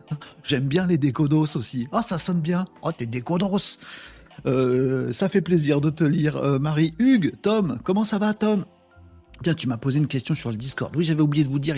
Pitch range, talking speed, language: 130-180 Hz, 220 wpm, French